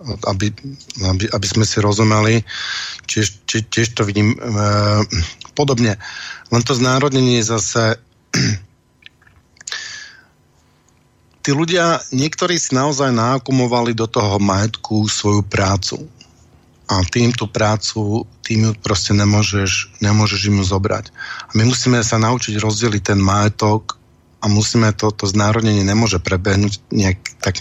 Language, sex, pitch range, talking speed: Slovak, male, 100-115 Hz, 120 wpm